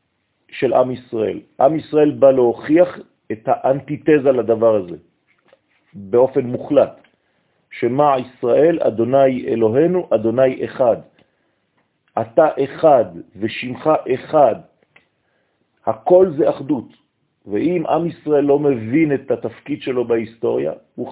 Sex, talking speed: male, 100 wpm